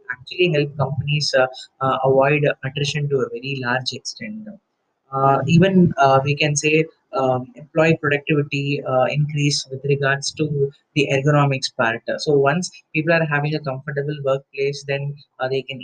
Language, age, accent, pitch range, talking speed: English, 30-49, Indian, 130-150 Hz, 160 wpm